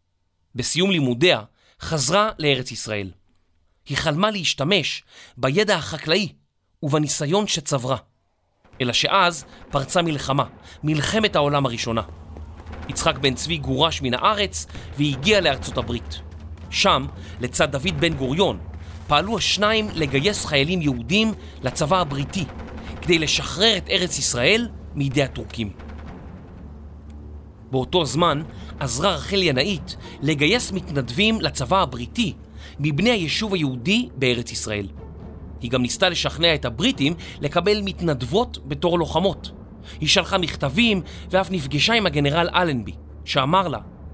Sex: male